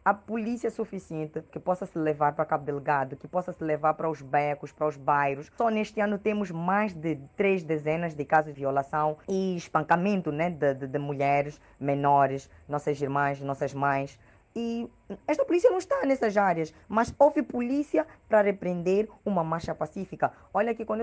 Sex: female